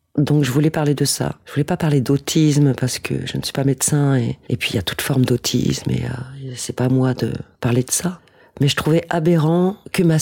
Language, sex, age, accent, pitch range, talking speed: French, female, 40-59, French, 130-155 Hz, 250 wpm